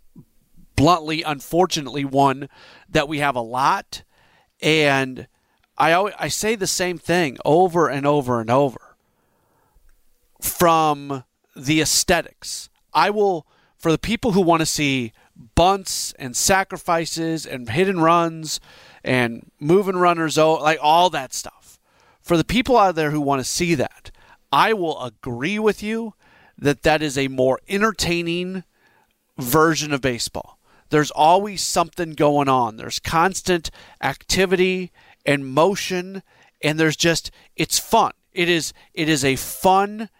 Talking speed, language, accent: 135 wpm, English, American